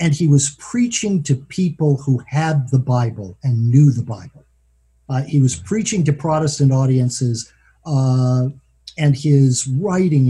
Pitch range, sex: 120-150 Hz, male